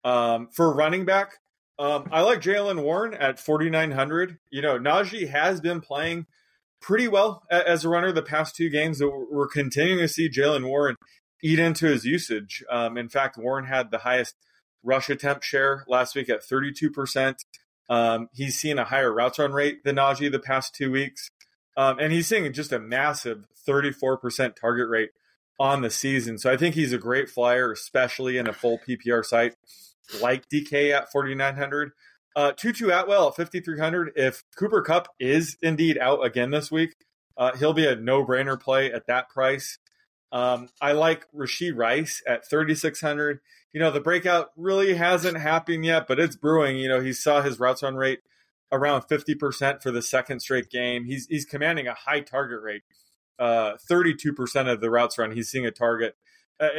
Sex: male